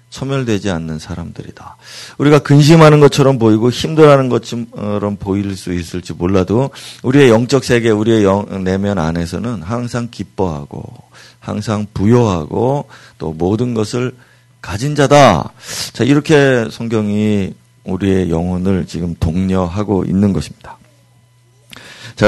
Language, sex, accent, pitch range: Korean, male, native, 105-140 Hz